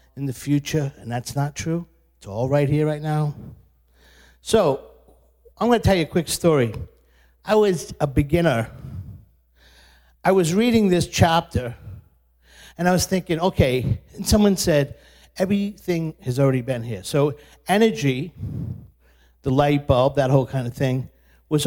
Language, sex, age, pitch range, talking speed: English, male, 50-69, 115-160 Hz, 150 wpm